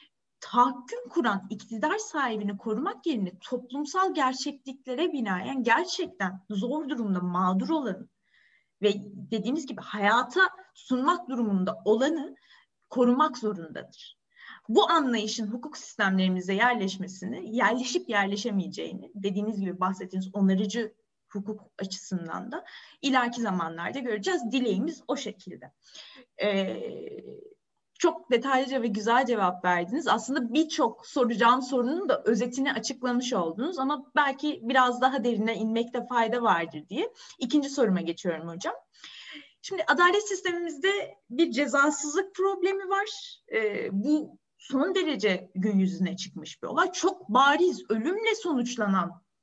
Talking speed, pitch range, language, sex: 110 wpm, 205-310 Hz, Turkish, female